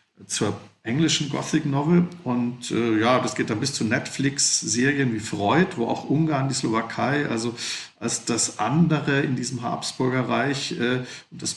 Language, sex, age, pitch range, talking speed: Slovak, male, 50-69, 115-150 Hz, 155 wpm